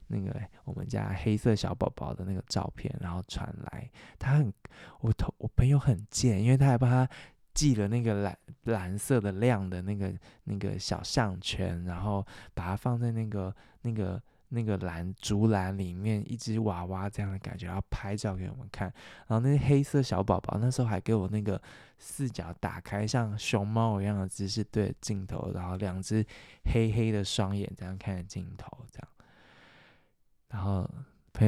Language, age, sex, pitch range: Chinese, 20-39, male, 95-120 Hz